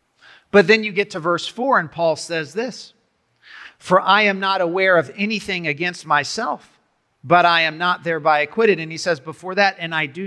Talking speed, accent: 200 wpm, American